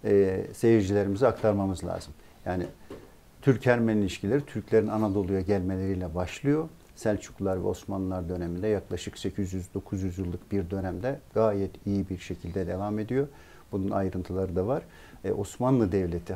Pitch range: 95-110 Hz